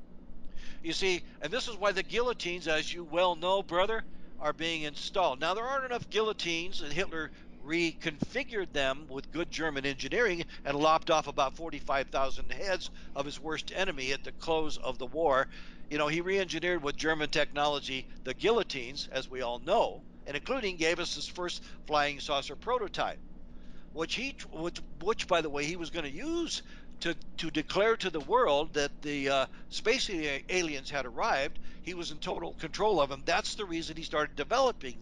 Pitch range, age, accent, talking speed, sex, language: 145-185 Hz, 60-79, American, 180 wpm, male, English